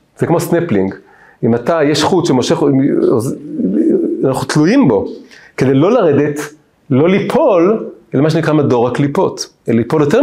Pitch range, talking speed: 135-210 Hz, 140 wpm